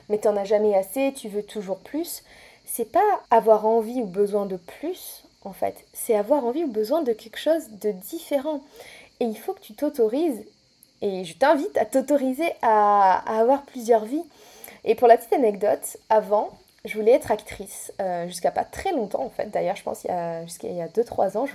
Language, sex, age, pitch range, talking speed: French, female, 20-39, 210-280 Hz, 210 wpm